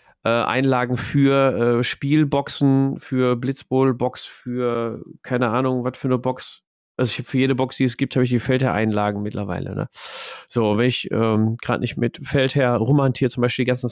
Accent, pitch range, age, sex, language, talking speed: German, 110-140 Hz, 40-59, male, German, 180 wpm